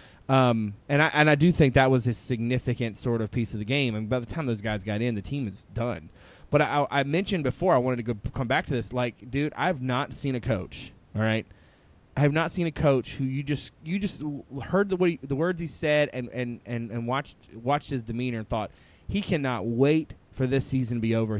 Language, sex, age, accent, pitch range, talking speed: English, male, 20-39, American, 115-140 Hz, 245 wpm